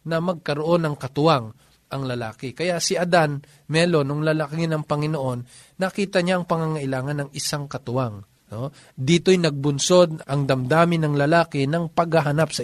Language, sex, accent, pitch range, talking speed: Filipino, male, native, 145-190 Hz, 145 wpm